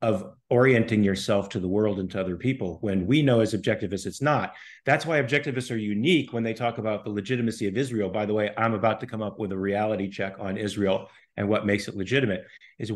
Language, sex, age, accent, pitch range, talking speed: English, male, 40-59, American, 110-135 Hz, 230 wpm